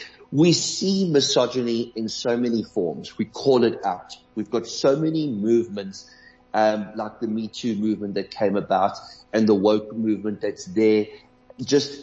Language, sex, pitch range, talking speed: English, male, 105-135 Hz, 160 wpm